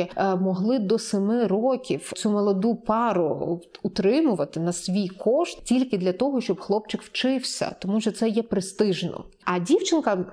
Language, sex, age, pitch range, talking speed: Ukrainian, female, 20-39, 200-260 Hz, 140 wpm